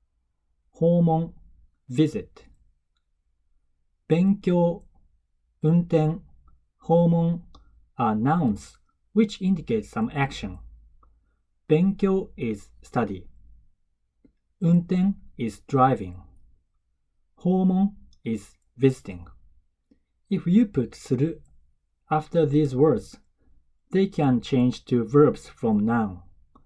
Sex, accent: male, native